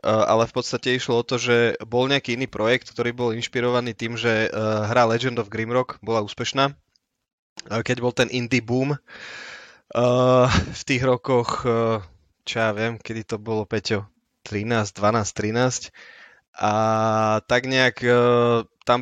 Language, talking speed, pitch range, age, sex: Slovak, 160 wpm, 115-125 Hz, 20-39, male